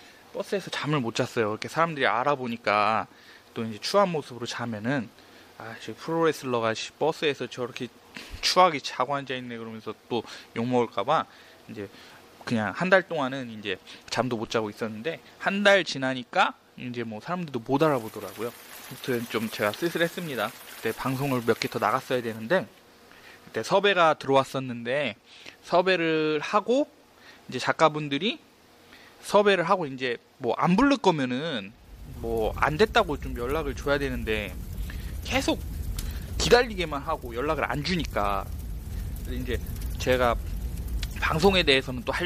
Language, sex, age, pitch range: Korean, male, 20-39, 115-165 Hz